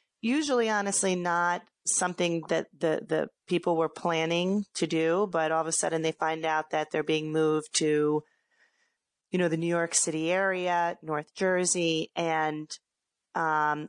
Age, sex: 30-49, female